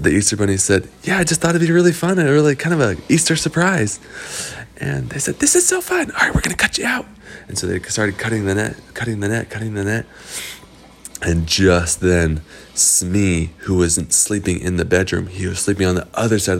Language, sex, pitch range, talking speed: English, male, 95-160 Hz, 230 wpm